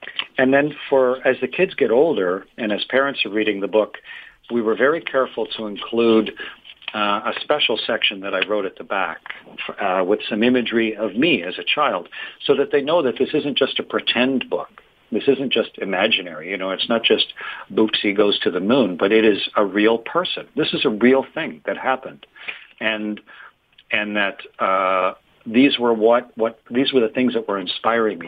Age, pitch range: 50-69, 105-130 Hz